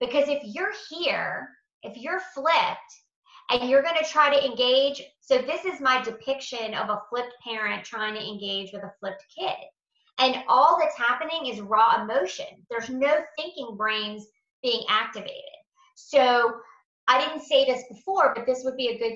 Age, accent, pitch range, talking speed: 30-49, American, 220-315 Hz, 170 wpm